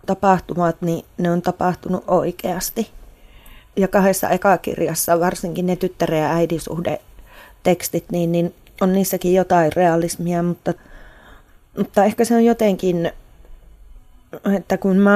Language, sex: Finnish, female